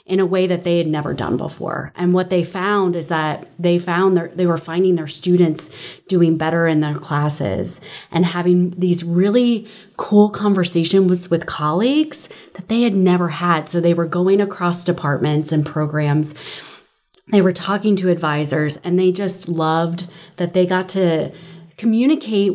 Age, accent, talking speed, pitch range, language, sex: 30-49, American, 165 wpm, 170-195 Hz, English, female